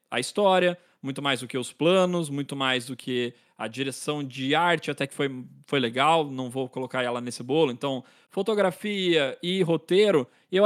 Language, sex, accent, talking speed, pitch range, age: Portuguese, male, Brazilian, 180 wpm, 130-175 Hz, 20-39